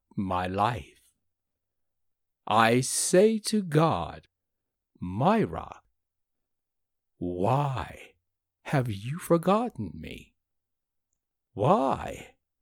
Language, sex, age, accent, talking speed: English, male, 60-79, American, 60 wpm